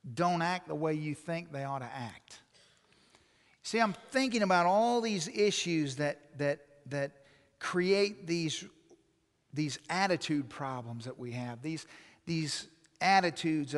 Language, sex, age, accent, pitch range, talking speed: English, male, 50-69, American, 150-195 Hz, 135 wpm